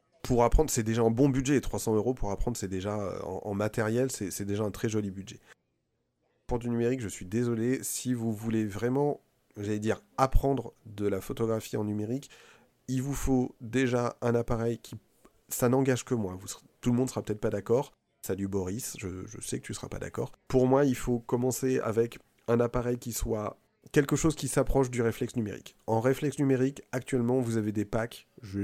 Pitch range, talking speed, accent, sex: 105-120 Hz, 205 wpm, French, male